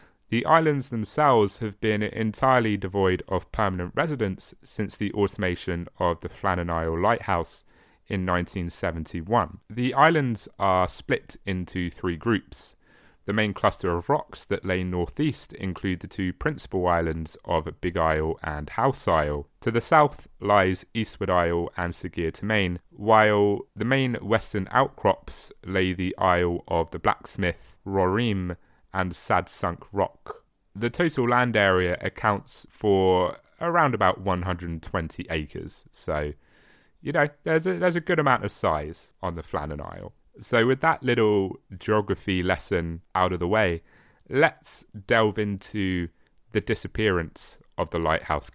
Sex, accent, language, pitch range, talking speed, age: male, British, English, 90-115 Hz, 140 wpm, 30-49